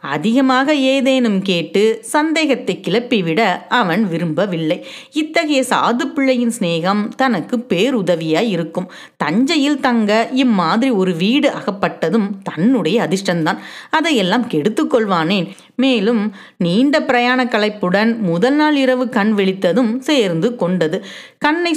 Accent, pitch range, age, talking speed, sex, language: native, 180-260 Hz, 30-49, 90 wpm, female, Tamil